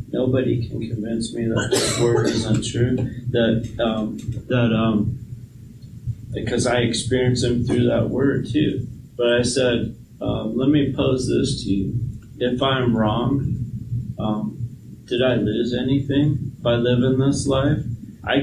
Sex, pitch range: male, 120-135 Hz